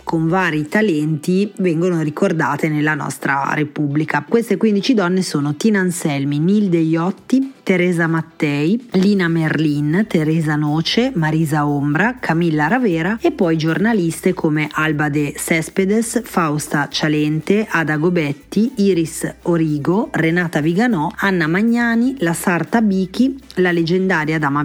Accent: native